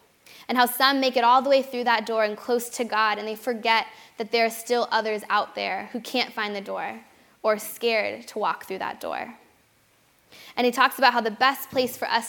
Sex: female